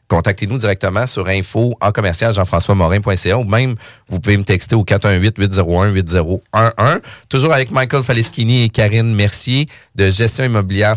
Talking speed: 140 wpm